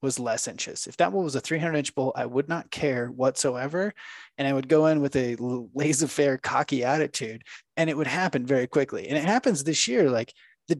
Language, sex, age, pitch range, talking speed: English, male, 20-39, 130-165 Hz, 220 wpm